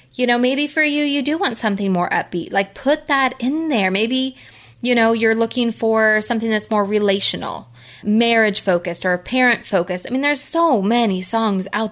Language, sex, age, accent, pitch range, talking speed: English, female, 20-39, American, 195-255 Hz, 180 wpm